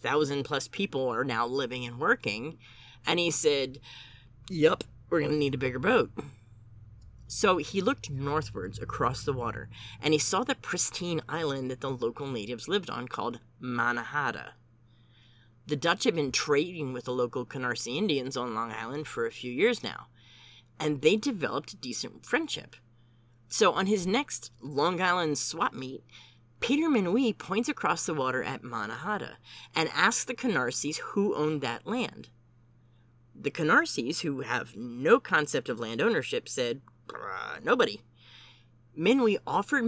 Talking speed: 150 wpm